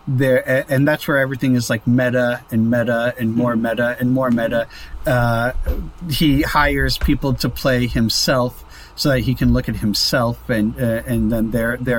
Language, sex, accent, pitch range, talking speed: English, male, American, 115-145 Hz, 180 wpm